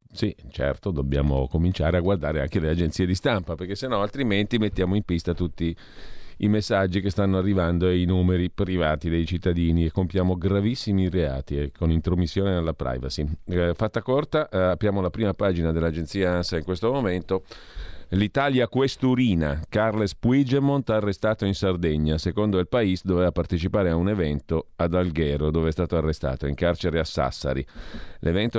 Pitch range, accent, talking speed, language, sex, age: 80-100 Hz, native, 160 wpm, Italian, male, 40-59